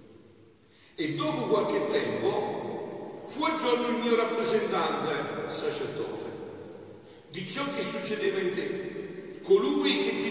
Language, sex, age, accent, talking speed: Italian, male, 50-69, native, 110 wpm